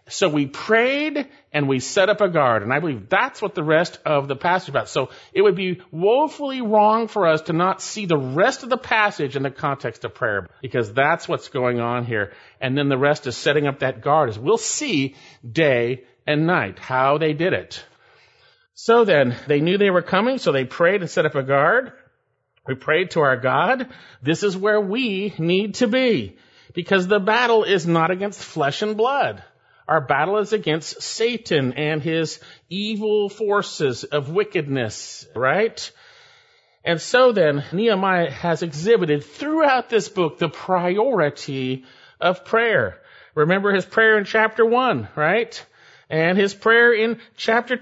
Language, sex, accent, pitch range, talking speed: English, male, American, 150-230 Hz, 175 wpm